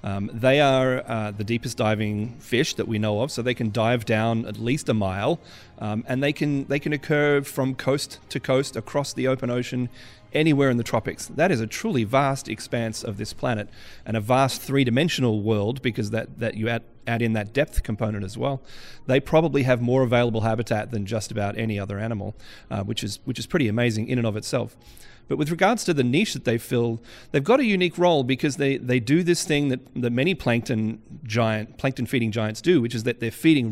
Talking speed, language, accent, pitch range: 220 wpm, English, Australian, 110-135 Hz